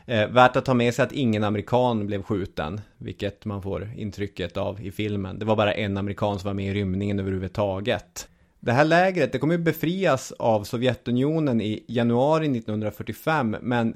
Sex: male